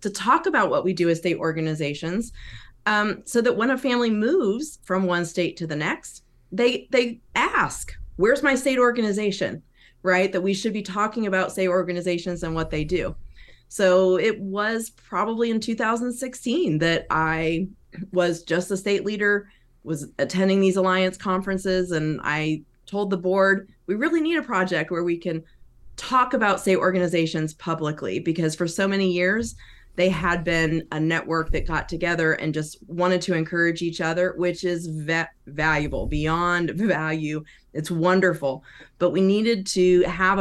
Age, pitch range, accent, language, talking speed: 30-49, 165-205 Hz, American, English, 165 wpm